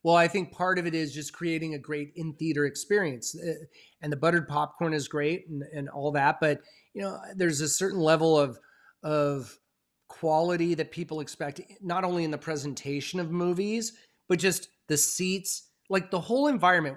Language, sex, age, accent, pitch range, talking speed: English, male, 30-49, American, 150-185 Hz, 185 wpm